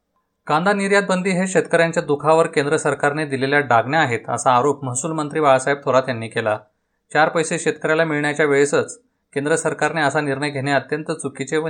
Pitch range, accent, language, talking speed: 125-155 Hz, native, Marathi, 165 wpm